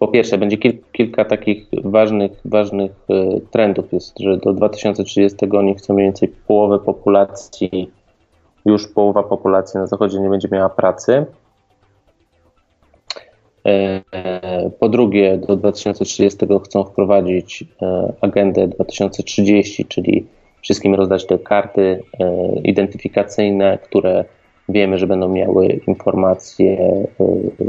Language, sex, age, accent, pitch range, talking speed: Polish, male, 20-39, native, 95-105 Hz, 100 wpm